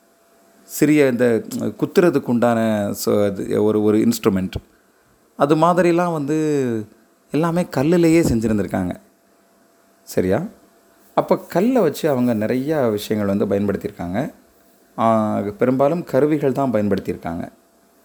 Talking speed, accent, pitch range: 85 wpm, native, 105-135 Hz